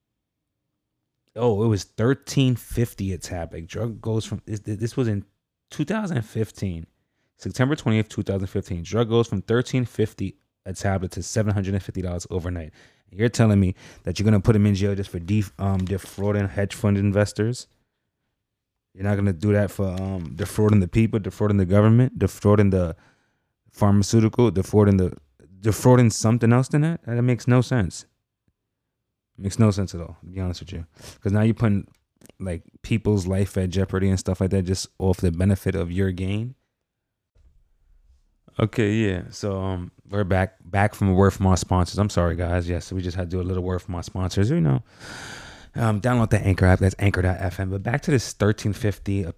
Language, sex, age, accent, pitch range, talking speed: English, male, 20-39, American, 95-110 Hz, 190 wpm